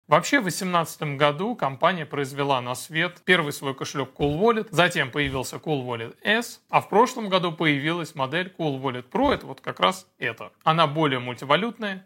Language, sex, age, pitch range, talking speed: Russian, male, 30-49, 135-175 Hz, 175 wpm